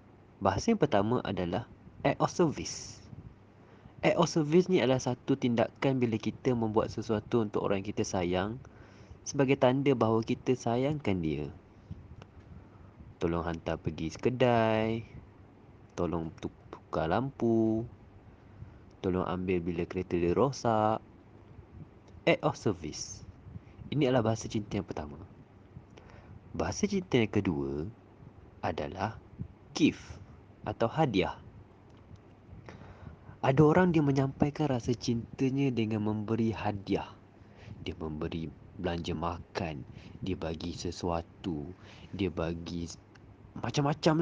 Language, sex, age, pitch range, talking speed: Malay, male, 30-49, 95-120 Hz, 105 wpm